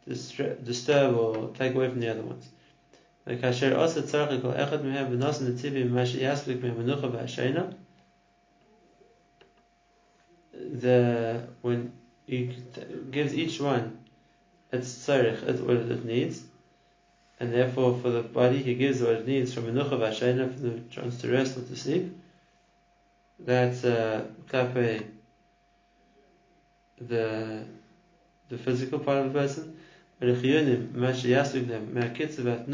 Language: English